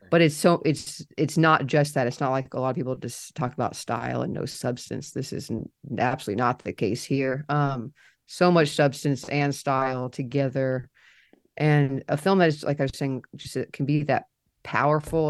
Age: 30-49